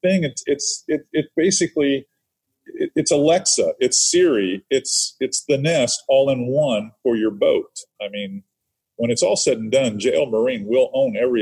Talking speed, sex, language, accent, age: 175 wpm, male, English, American, 40-59